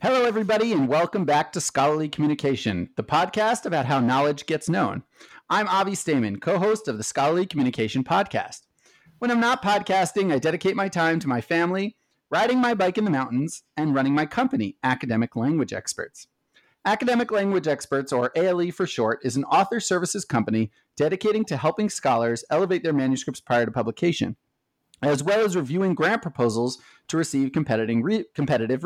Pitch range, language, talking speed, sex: 130-190 Hz, English, 165 wpm, male